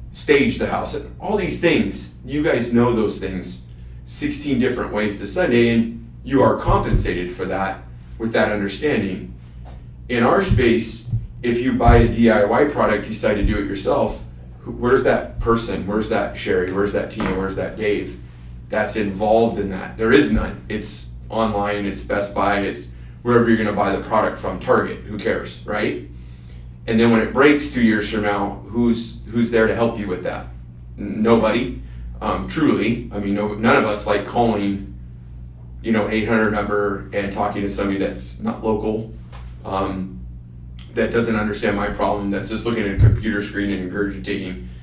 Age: 30-49